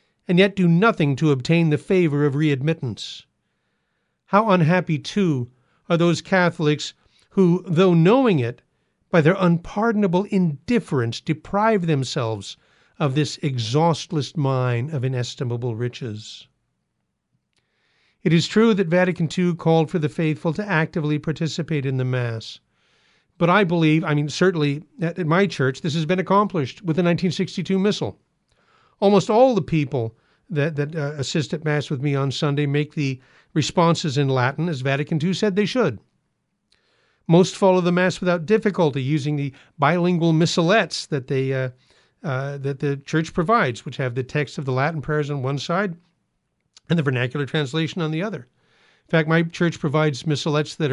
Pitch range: 140-180 Hz